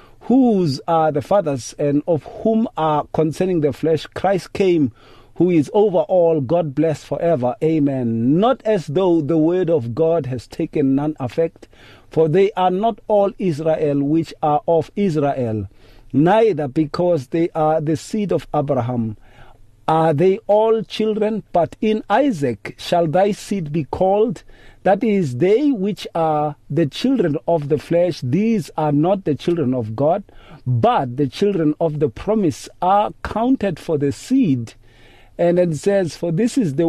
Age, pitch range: 50-69, 125-185 Hz